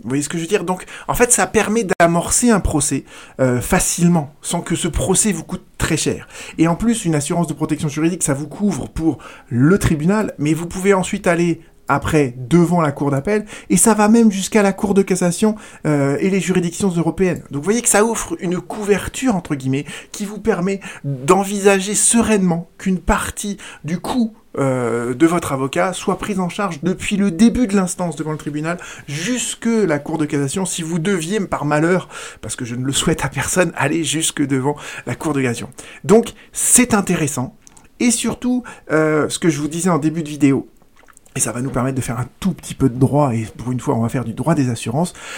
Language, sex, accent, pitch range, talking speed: French, male, French, 140-200 Hz, 215 wpm